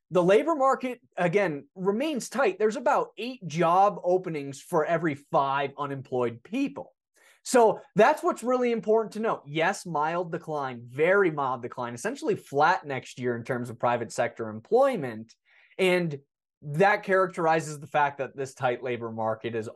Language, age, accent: English, 20-39, American